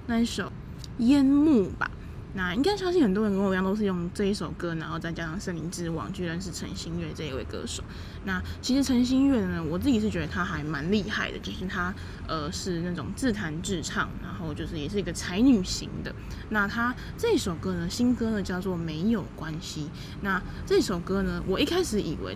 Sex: female